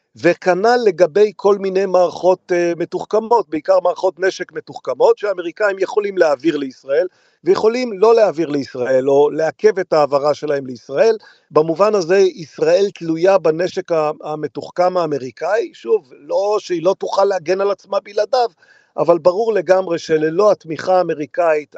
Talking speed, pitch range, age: 125 wpm, 160-205 Hz, 50-69